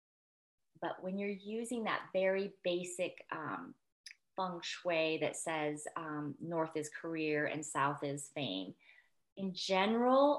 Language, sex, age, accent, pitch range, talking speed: English, female, 30-49, American, 155-190 Hz, 125 wpm